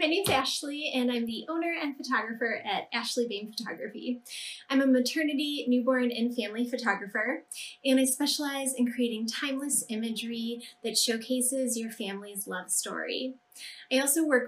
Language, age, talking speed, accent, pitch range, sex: English, 10-29, 155 wpm, American, 230-275 Hz, female